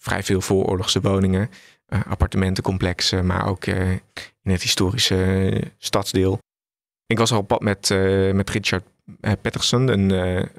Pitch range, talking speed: 95-110 Hz, 155 wpm